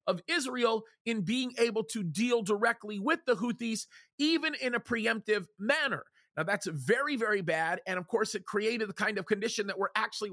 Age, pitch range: 40-59, 200-255 Hz